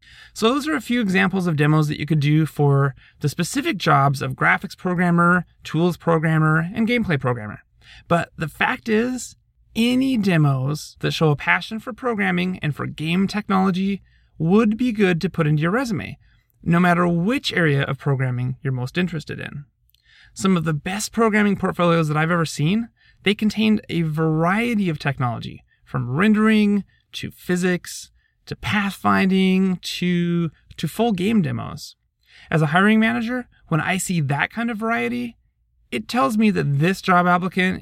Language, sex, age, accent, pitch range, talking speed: English, male, 30-49, American, 150-210 Hz, 165 wpm